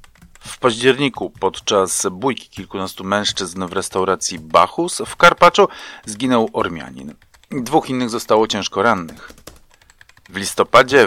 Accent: native